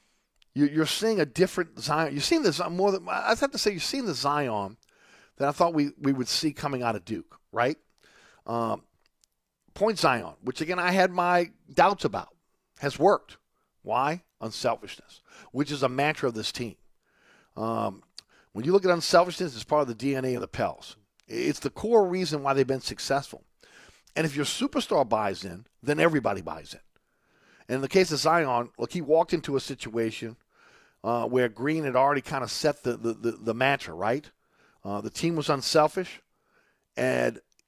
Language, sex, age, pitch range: English, male, 50-69, 115-165 Hz